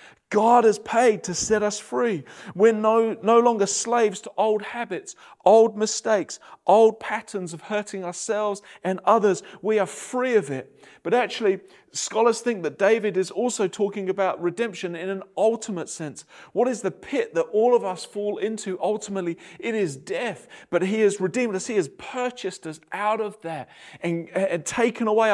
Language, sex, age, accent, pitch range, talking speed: English, male, 30-49, British, 150-215 Hz, 175 wpm